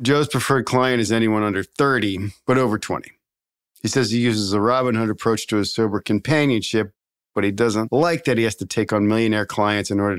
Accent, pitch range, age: American, 105-130 Hz, 50-69